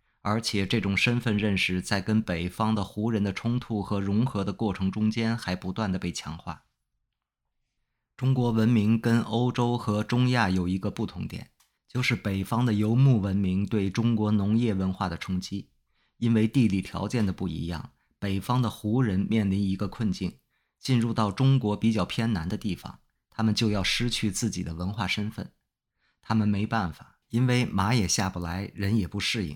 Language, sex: English, male